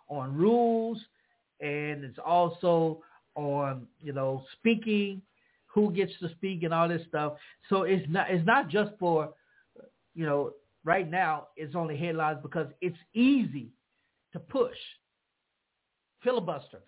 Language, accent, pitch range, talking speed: English, American, 145-195 Hz, 130 wpm